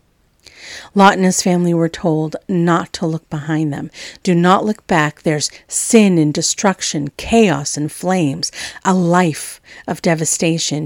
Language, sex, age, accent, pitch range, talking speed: English, female, 50-69, American, 160-195 Hz, 145 wpm